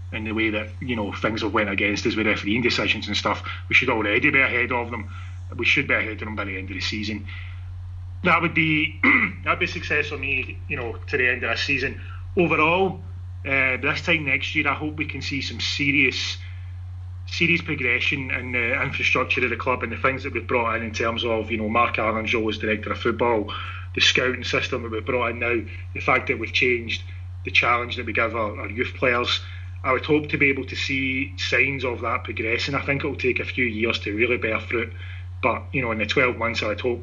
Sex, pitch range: male, 90-115 Hz